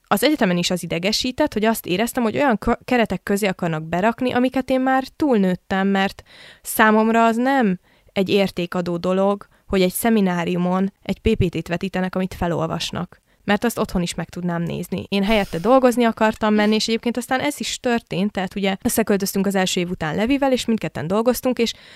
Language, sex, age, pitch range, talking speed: Hungarian, female, 20-39, 180-230 Hz, 170 wpm